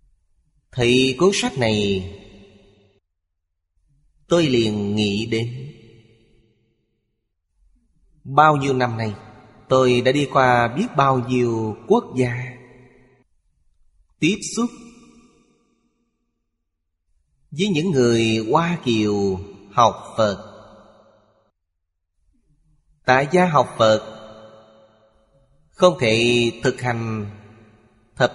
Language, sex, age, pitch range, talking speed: Vietnamese, male, 30-49, 100-130 Hz, 85 wpm